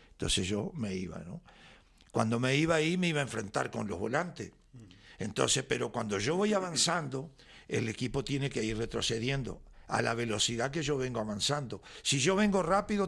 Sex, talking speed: male, 180 wpm